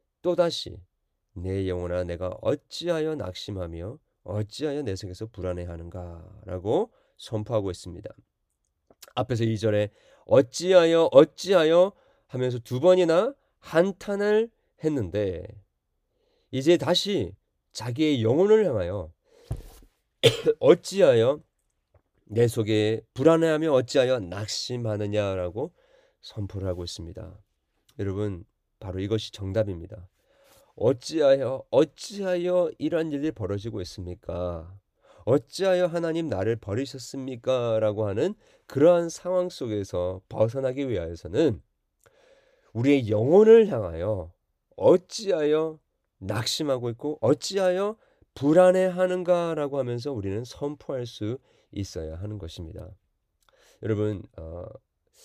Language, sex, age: Korean, male, 40-59